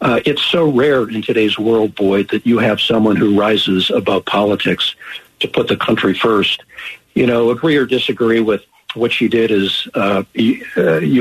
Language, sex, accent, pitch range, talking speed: English, male, American, 100-120 Hz, 180 wpm